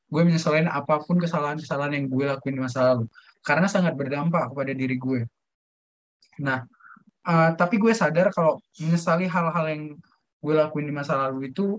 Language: Indonesian